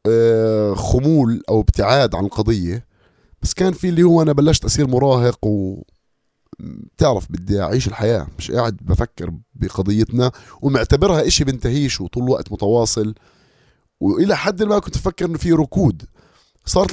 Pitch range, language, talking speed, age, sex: 105-140 Hz, Arabic, 130 wpm, 30-49, male